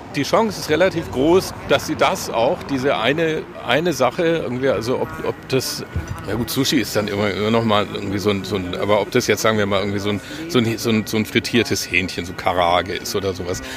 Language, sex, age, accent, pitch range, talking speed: German, male, 50-69, German, 110-140 Hz, 220 wpm